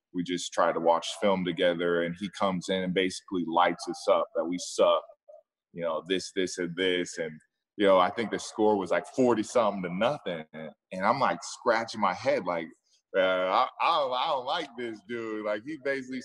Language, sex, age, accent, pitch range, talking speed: English, male, 20-39, American, 95-115 Hz, 210 wpm